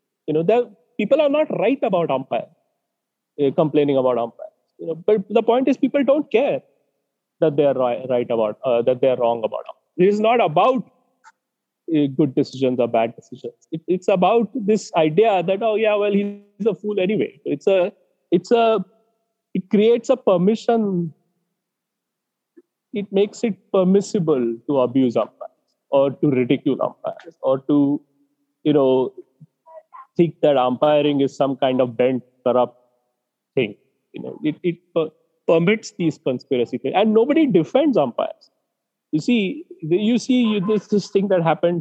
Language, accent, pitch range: English, Indian, 130-210 Hz